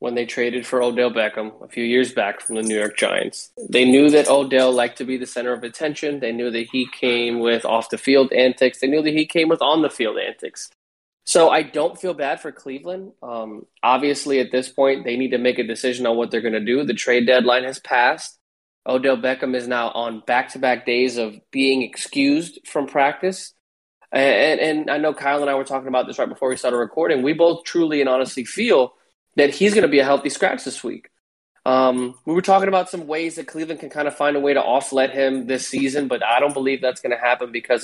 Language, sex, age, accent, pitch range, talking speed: English, male, 20-39, American, 120-140 Hz, 230 wpm